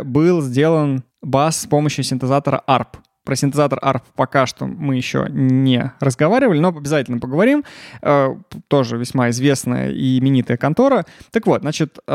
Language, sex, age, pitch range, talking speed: Russian, male, 20-39, 135-195 Hz, 140 wpm